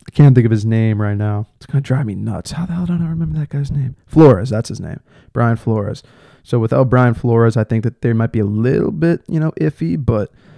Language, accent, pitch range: English, American, 115-135 Hz